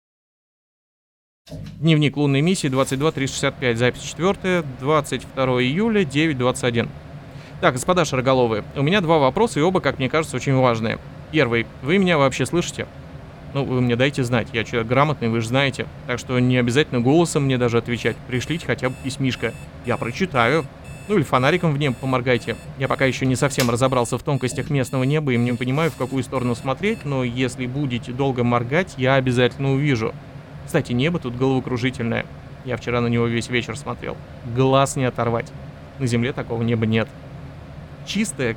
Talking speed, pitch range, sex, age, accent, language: 160 wpm, 125-145 Hz, male, 30-49, native, Russian